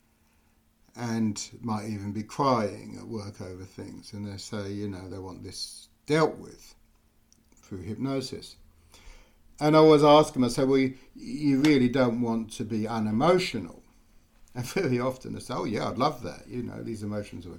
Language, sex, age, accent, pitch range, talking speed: English, male, 60-79, British, 100-125 Hz, 175 wpm